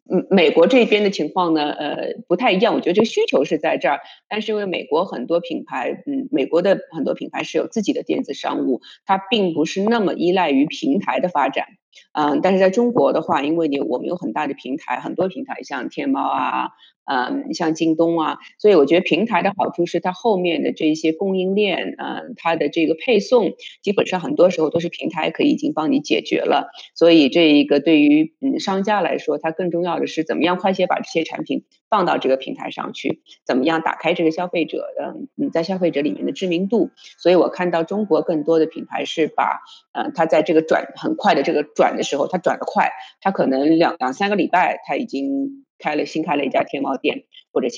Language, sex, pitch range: English, female, 155-235 Hz